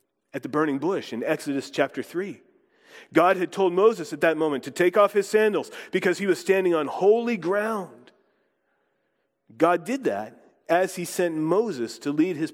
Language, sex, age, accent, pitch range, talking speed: English, male, 40-59, American, 135-200 Hz, 175 wpm